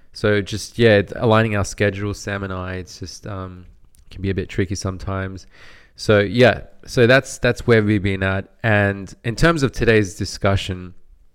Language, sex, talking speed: English, male, 175 wpm